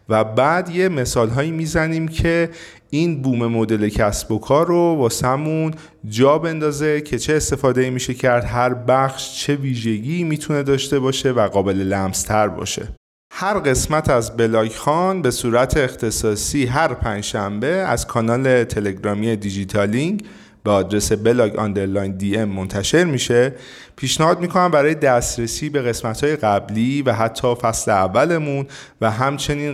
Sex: male